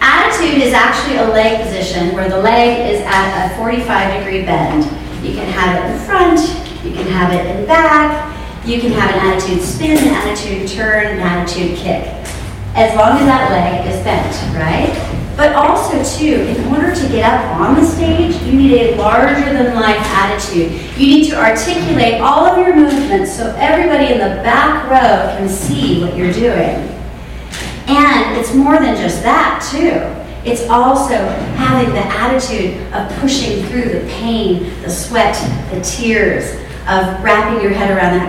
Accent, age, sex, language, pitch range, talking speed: American, 30-49, female, English, 180-255 Hz, 175 wpm